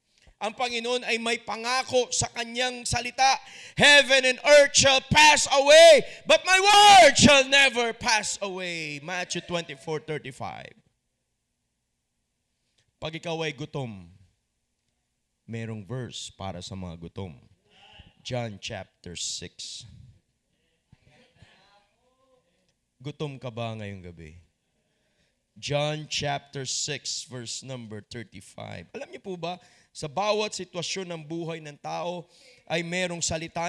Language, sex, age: Filipino, male, 20-39